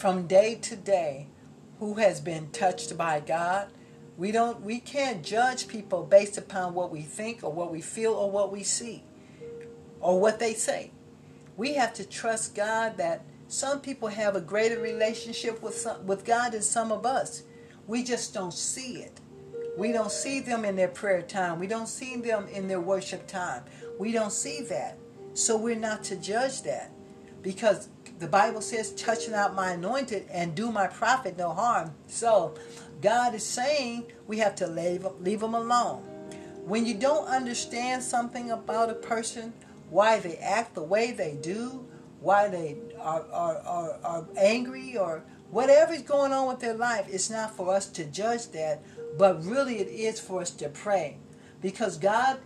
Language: English